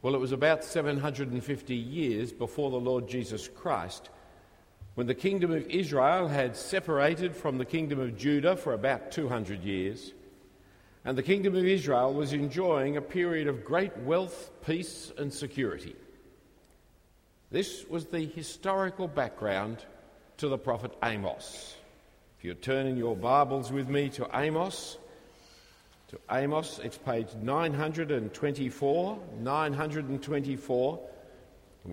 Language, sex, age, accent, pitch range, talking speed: English, male, 50-69, Australian, 115-155 Hz, 125 wpm